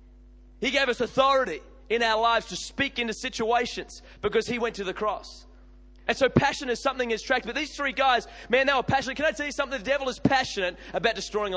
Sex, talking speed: male, 225 wpm